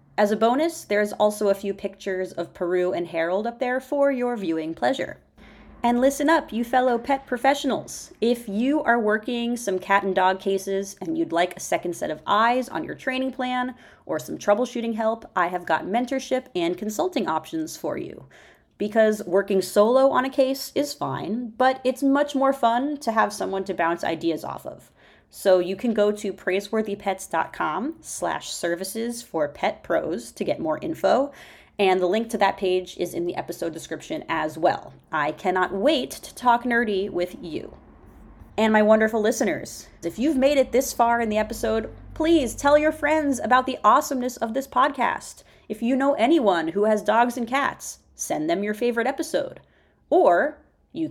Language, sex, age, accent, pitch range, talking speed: English, female, 30-49, American, 190-260 Hz, 180 wpm